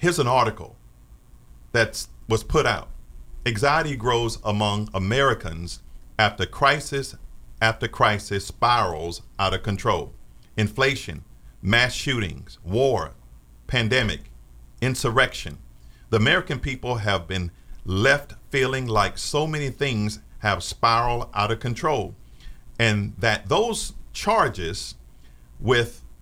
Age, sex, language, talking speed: 50-69, male, English, 105 wpm